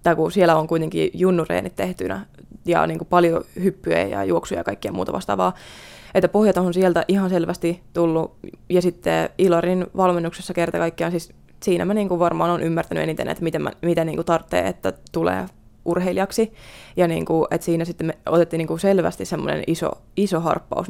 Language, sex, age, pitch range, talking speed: Finnish, female, 20-39, 160-180 Hz, 170 wpm